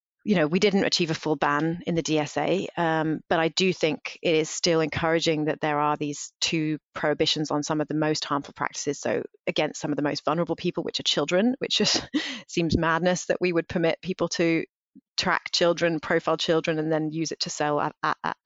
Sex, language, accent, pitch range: female, English, British, 155-175 Hz